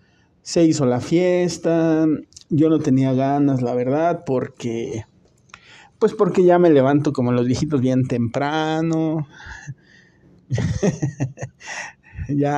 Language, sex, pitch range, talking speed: Spanish, male, 130-165 Hz, 105 wpm